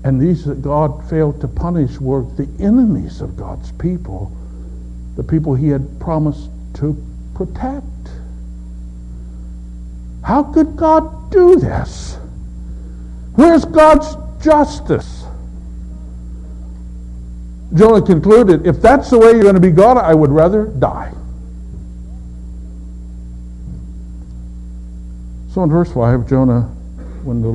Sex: male